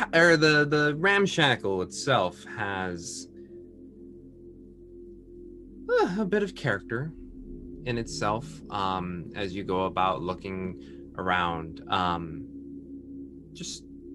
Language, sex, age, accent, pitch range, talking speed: English, male, 20-39, American, 85-120 Hz, 95 wpm